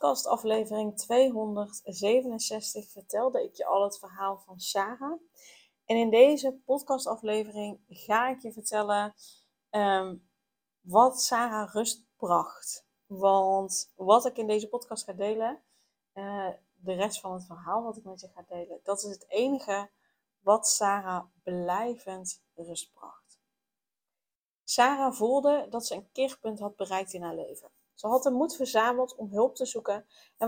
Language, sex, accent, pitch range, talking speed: Dutch, female, Dutch, 195-255 Hz, 145 wpm